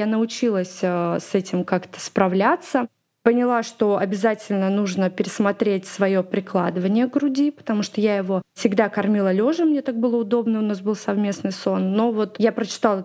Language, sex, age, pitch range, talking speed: Russian, female, 20-39, 200-245 Hz, 160 wpm